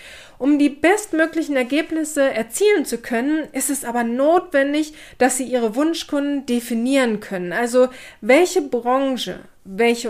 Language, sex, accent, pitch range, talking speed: German, female, German, 235-295 Hz, 125 wpm